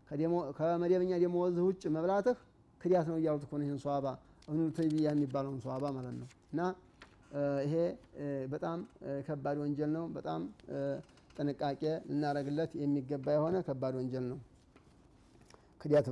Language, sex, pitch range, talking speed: Amharic, male, 140-180 Hz, 120 wpm